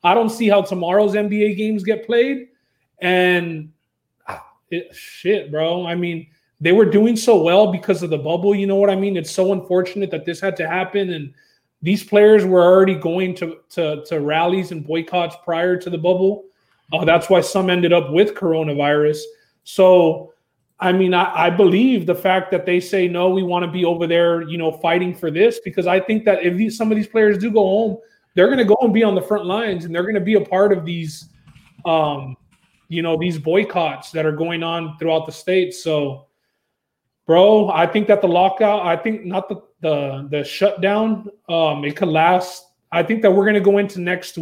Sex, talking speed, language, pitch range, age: male, 210 wpm, English, 170-200 Hz, 30-49